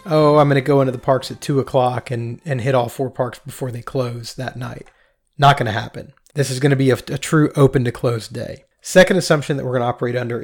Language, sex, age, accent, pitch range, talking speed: English, male, 30-49, American, 125-145 Hz, 265 wpm